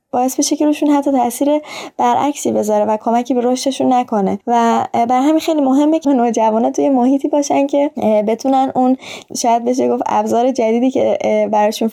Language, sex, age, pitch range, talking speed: Persian, female, 20-39, 215-260 Hz, 160 wpm